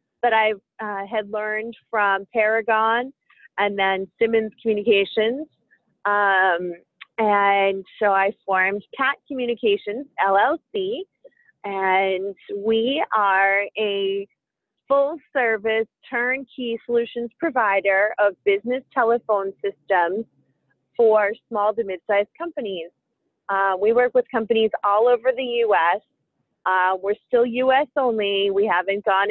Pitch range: 200-240 Hz